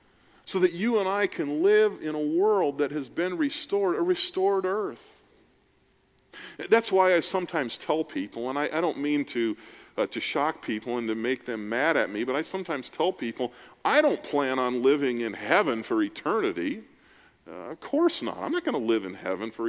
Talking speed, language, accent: 200 wpm, English, American